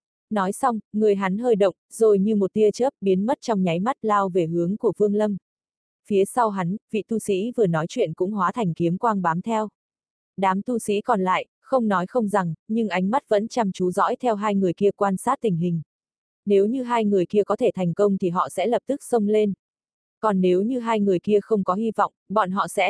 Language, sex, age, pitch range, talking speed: Vietnamese, female, 20-39, 185-220 Hz, 240 wpm